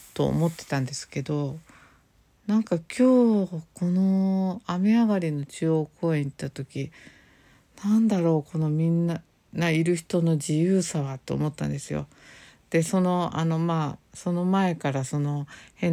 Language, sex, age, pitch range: Japanese, female, 50-69, 145-180 Hz